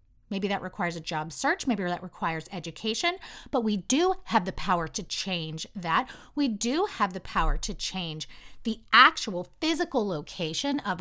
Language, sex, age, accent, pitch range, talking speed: English, female, 30-49, American, 185-280 Hz, 170 wpm